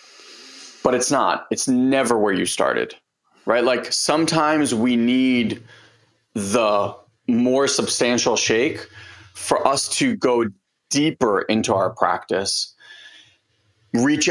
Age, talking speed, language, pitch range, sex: 30-49, 110 wpm, English, 110-125 Hz, male